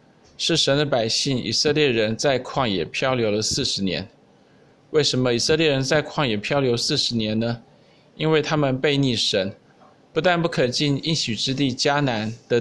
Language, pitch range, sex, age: Chinese, 120-150 Hz, male, 20-39